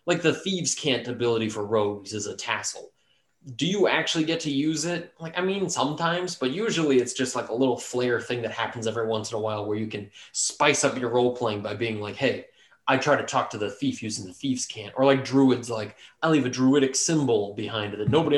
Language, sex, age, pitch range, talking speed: English, male, 20-39, 115-145 Hz, 235 wpm